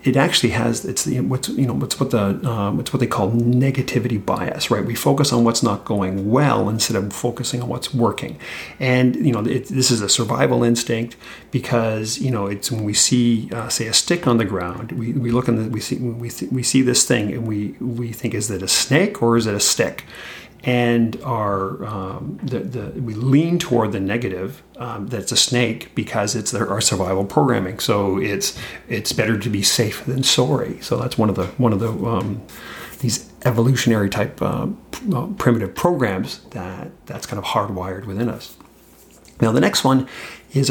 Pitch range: 105-125 Hz